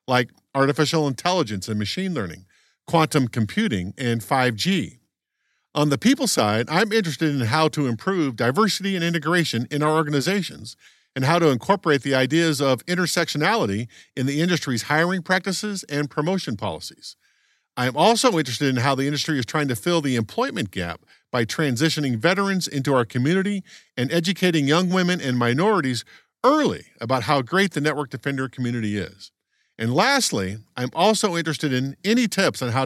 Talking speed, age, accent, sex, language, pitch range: 160 wpm, 50-69, American, male, English, 120-180 Hz